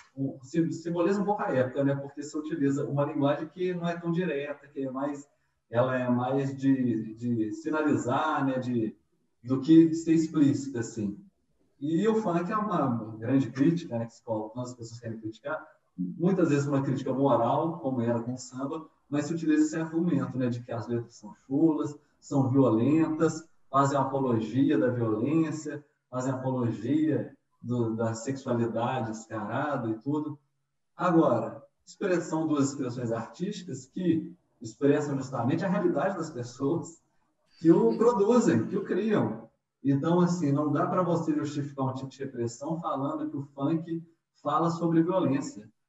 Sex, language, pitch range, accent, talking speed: male, Portuguese, 125-160 Hz, Brazilian, 160 wpm